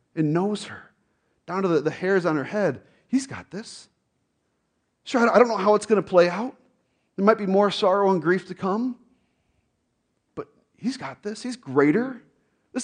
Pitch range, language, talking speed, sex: 175-230 Hz, English, 180 wpm, male